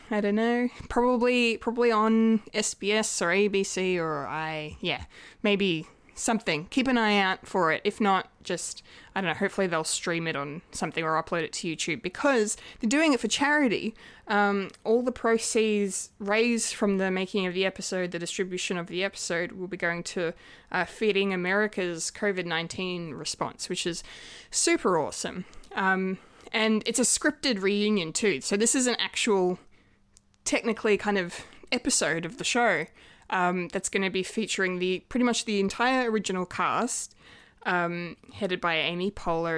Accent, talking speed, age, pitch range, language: Australian, 165 wpm, 20-39, 175-220 Hz, English